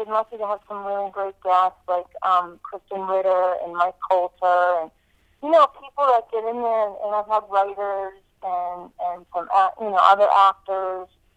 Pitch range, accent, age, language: 180-225 Hz, American, 40-59, English